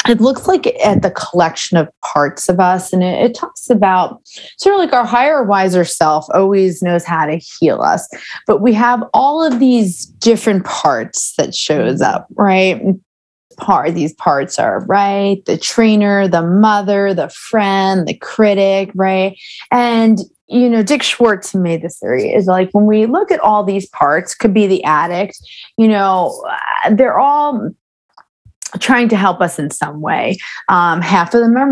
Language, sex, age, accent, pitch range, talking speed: English, female, 30-49, American, 175-225 Hz, 170 wpm